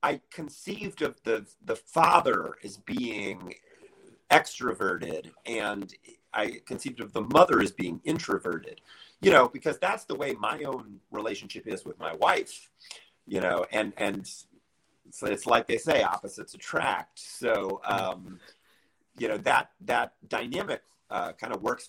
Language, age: English, 40-59